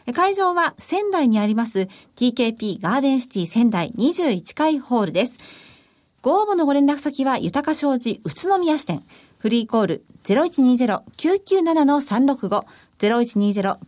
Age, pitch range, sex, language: 40-59, 220-310 Hz, female, Japanese